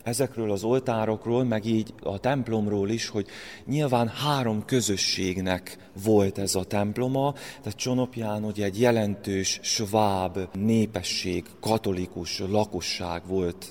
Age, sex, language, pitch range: 30-49, male, Hungarian, 105-130 Hz